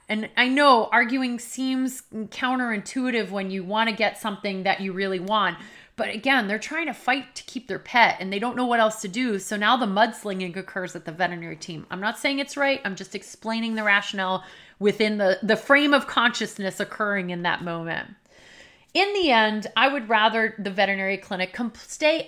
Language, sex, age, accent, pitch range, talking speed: English, female, 30-49, American, 195-255 Hz, 195 wpm